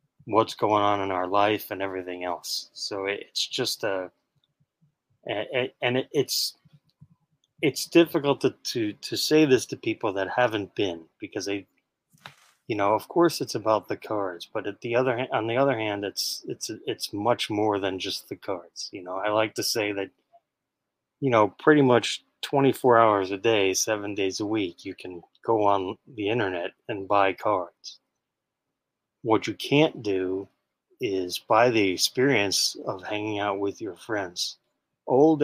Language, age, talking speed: English, 20-39, 165 wpm